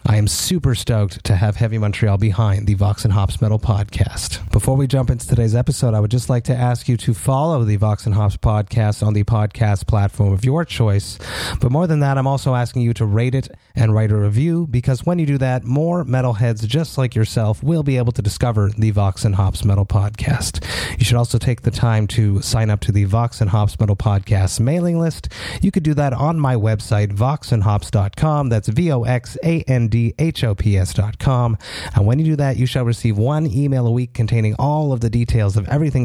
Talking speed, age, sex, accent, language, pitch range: 210 wpm, 30-49, male, American, English, 105-130 Hz